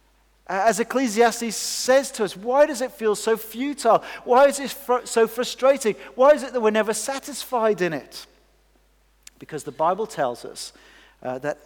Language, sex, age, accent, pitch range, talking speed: English, male, 40-59, British, 155-220 Hz, 170 wpm